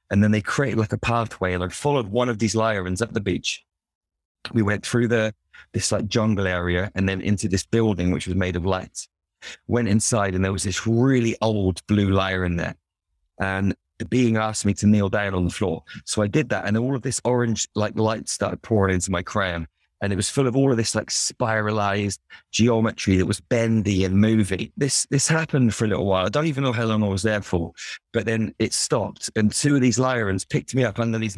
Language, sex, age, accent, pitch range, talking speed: English, male, 30-49, British, 95-115 Hz, 230 wpm